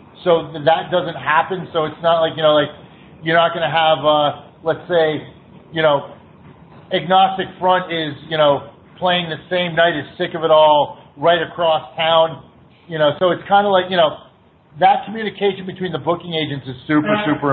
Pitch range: 155-185 Hz